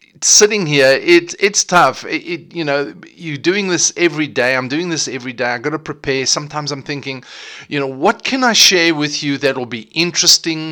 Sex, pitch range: male, 130-165 Hz